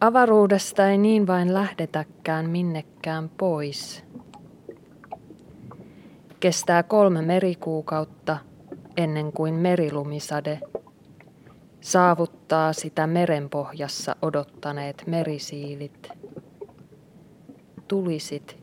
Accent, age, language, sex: native, 20-39, Finnish, female